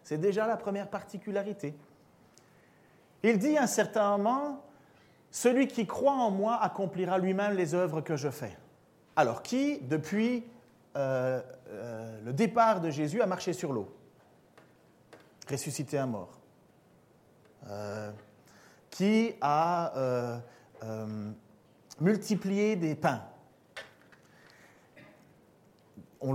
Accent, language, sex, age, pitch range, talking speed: French, French, male, 40-59, 145-220 Hz, 105 wpm